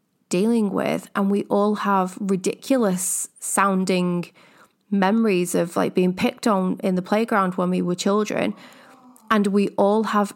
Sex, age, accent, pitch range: female, 20-39, British, 185-220 Hz